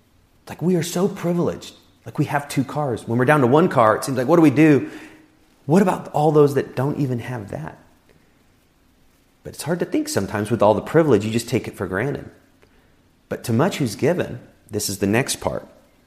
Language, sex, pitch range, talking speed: English, male, 90-125 Hz, 215 wpm